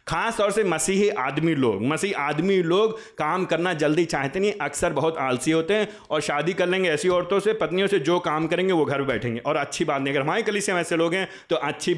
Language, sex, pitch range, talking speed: Hindi, male, 130-180 Hz, 240 wpm